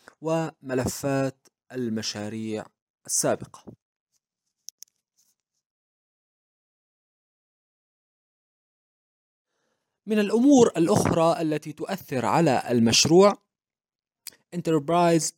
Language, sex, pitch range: Arabic, male, 120-160 Hz